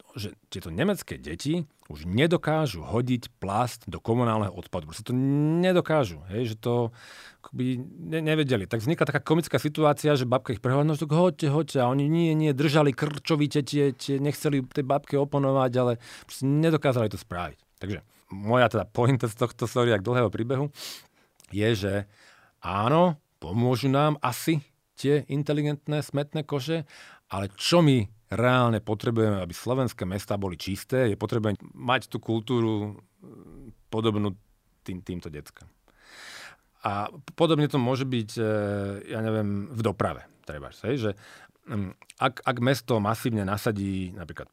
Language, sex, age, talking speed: Slovak, male, 40-59, 140 wpm